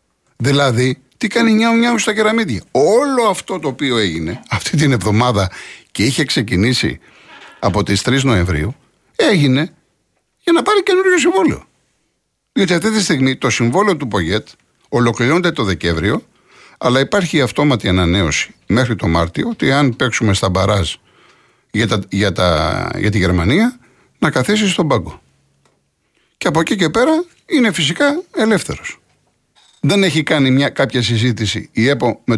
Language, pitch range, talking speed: Greek, 110-180 Hz, 150 wpm